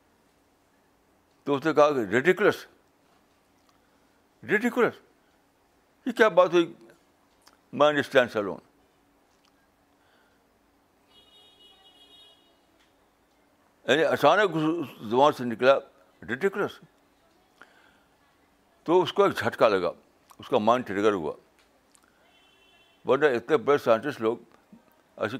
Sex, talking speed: male, 85 wpm